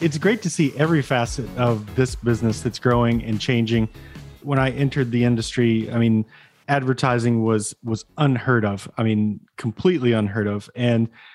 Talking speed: 165 wpm